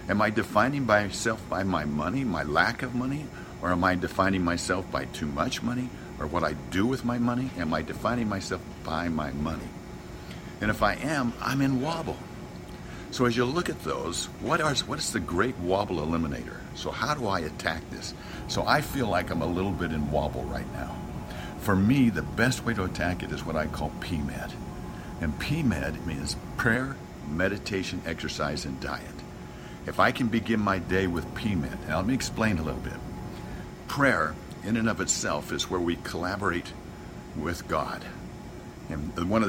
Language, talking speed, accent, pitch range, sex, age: English, 185 wpm, American, 75-105 Hz, male, 60-79